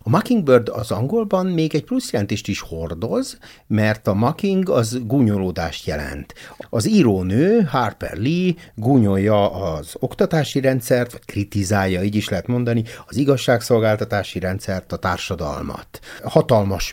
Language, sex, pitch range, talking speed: Hungarian, male, 95-130 Hz, 130 wpm